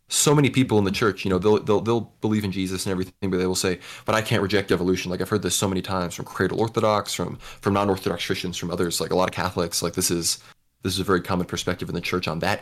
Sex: male